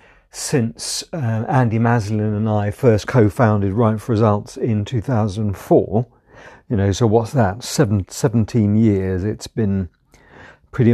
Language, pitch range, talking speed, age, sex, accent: English, 100-120 Hz, 125 wpm, 50-69, male, British